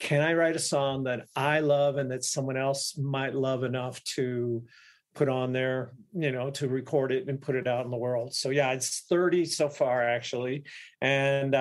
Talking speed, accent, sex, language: 200 wpm, American, male, English